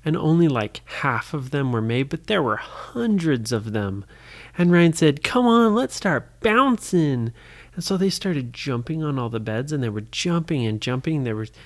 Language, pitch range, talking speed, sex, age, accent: English, 115-160 Hz, 200 wpm, male, 30-49, American